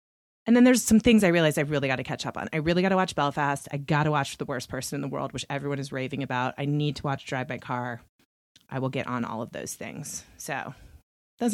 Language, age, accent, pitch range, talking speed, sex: English, 30-49, American, 140-175 Hz, 270 wpm, female